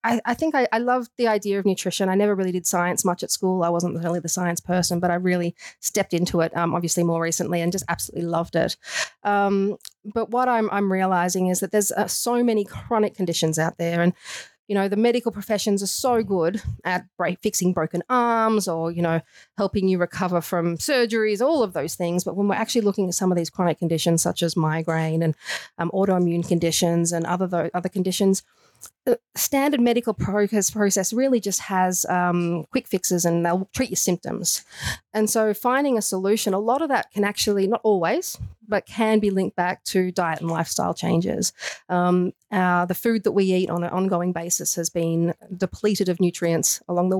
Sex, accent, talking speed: female, Australian, 200 wpm